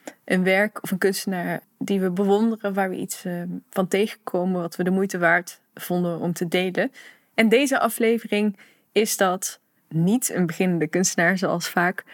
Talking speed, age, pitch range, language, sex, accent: 165 wpm, 20-39, 185-225 Hz, Dutch, female, Dutch